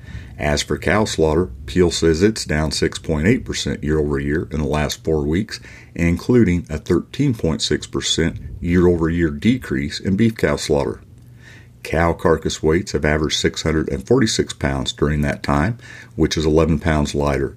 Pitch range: 75-90 Hz